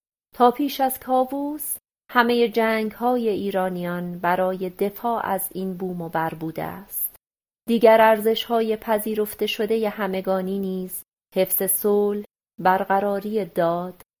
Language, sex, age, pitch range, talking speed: Persian, female, 30-49, 180-215 Hz, 120 wpm